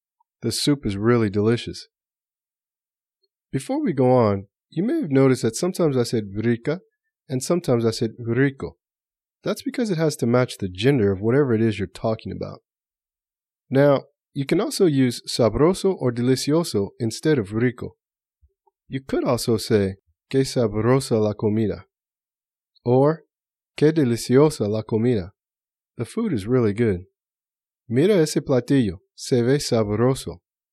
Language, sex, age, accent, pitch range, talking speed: English, male, 30-49, American, 110-145 Hz, 145 wpm